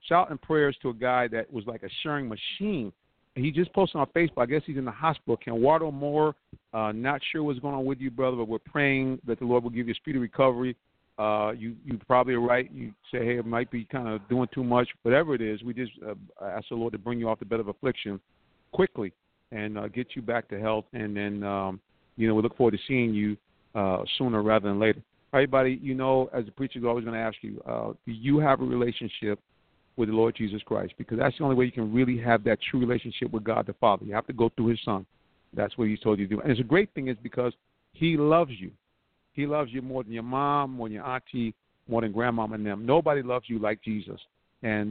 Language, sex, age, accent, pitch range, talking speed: English, male, 50-69, American, 110-140 Hz, 255 wpm